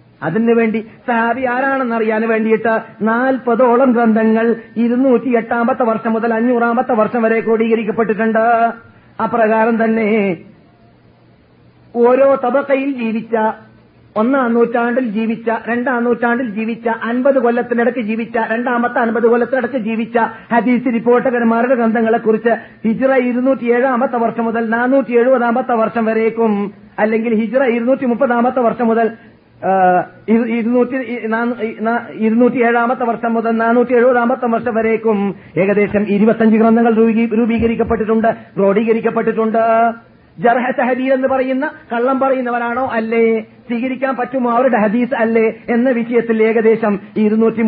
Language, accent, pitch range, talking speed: Malayalam, native, 225-245 Hz, 100 wpm